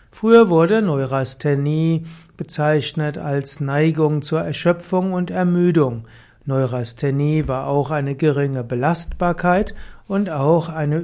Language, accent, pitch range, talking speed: German, German, 145-170 Hz, 105 wpm